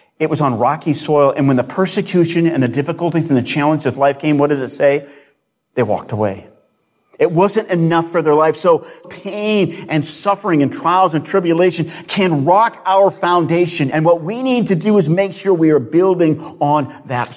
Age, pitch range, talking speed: 40-59, 120-170 Hz, 195 wpm